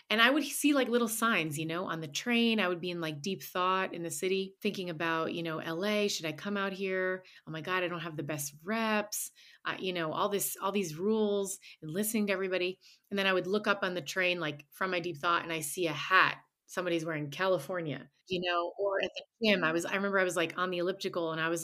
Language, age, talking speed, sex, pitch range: English, 30-49, 260 wpm, female, 160-195 Hz